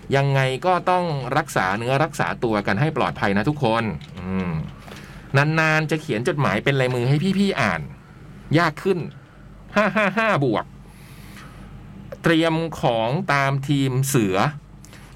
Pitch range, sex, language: 135-175 Hz, male, Thai